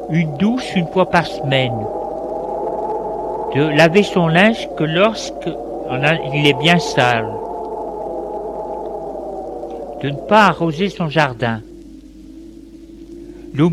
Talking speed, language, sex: 95 wpm, French, male